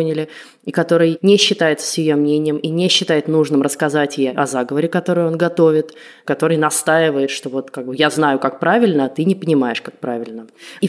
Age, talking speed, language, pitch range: 20-39, 195 wpm, Russian, 155-195 Hz